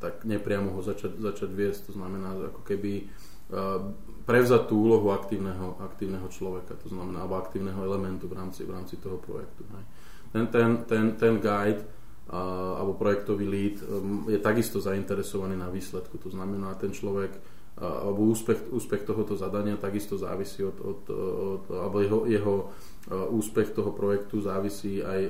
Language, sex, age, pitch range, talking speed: Slovak, male, 20-39, 95-105 Hz, 160 wpm